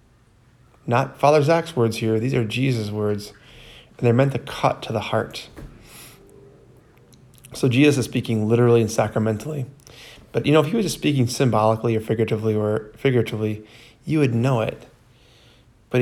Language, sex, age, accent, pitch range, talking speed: English, male, 20-39, American, 110-125 Hz, 155 wpm